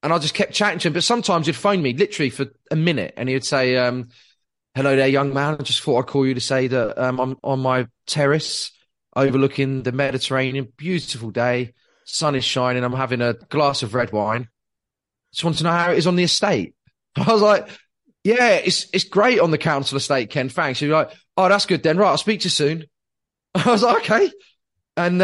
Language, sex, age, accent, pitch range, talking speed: English, male, 30-49, British, 125-170 Hz, 225 wpm